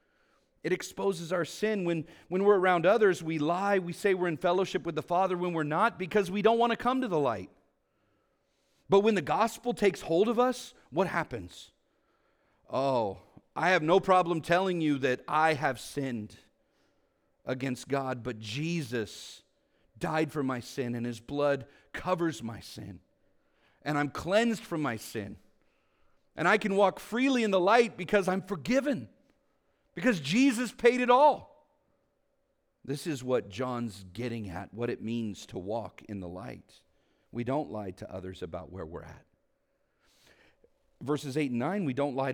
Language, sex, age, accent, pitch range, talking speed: English, male, 40-59, American, 115-195 Hz, 165 wpm